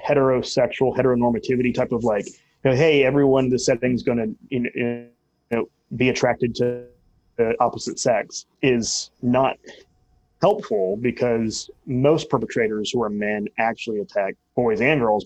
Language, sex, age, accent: English, male, 30-49, American